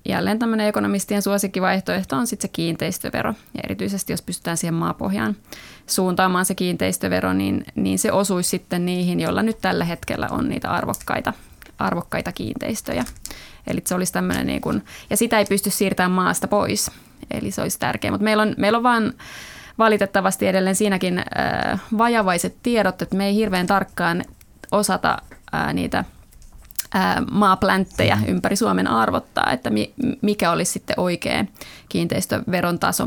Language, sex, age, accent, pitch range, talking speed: Finnish, female, 30-49, native, 180-215 Hz, 140 wpm